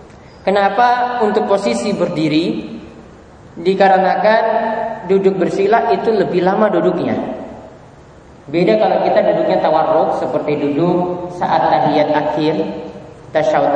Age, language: 20-39, English